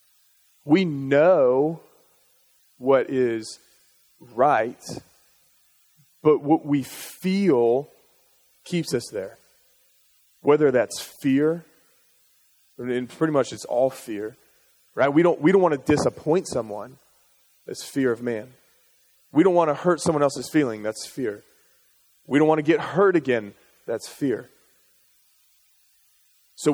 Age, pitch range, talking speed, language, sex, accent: 30-49, 125-155 Hz, 120 wpm, English, male, American